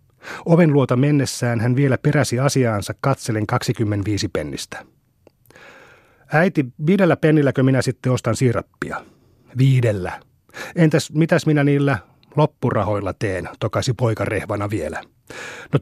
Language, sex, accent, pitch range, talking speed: Finnish, male, native, 110-140 Hz, 110 wpm